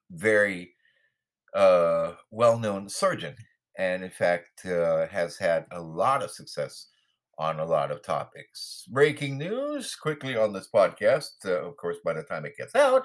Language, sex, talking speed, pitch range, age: English, male, 155 wpm, 85-140 Hz, 50-69